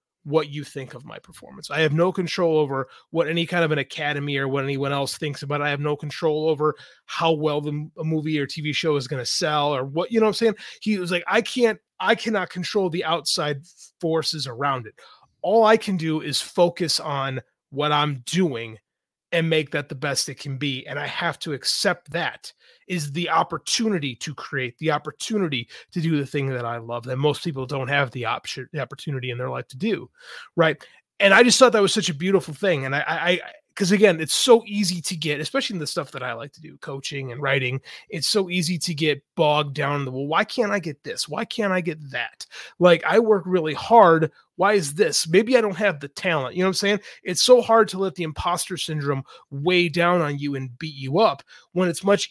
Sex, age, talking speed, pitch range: male, 30-49, 235 wpm, 145-195 Hz